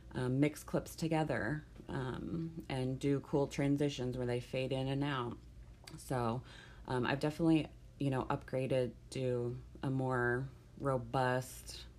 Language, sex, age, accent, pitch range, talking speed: English, female, 30-49, American, 120-140 Hz, 130 wpm